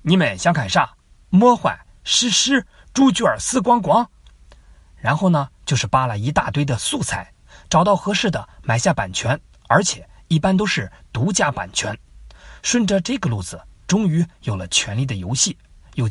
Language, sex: Chinese, male